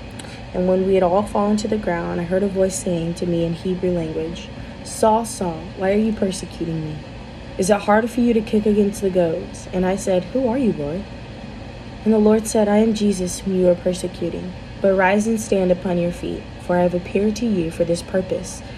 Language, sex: English, female